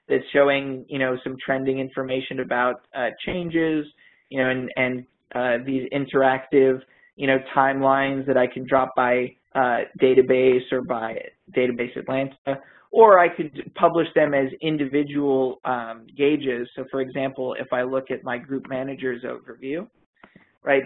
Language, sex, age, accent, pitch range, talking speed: English, male, 20-39, American, 130-150 Hz, 150 wpm